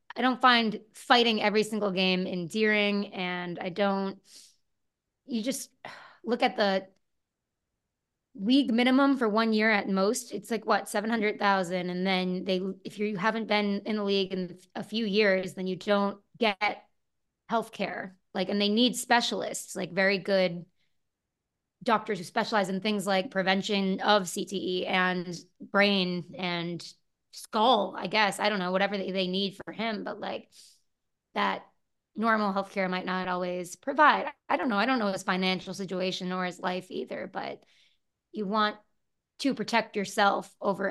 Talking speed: 155 wpm